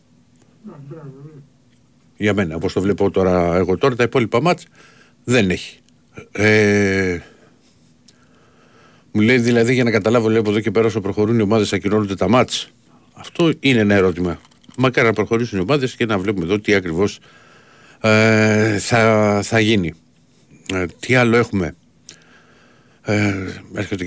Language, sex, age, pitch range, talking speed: Greek, male, 50-69, 95-115 Hz, 130 wpm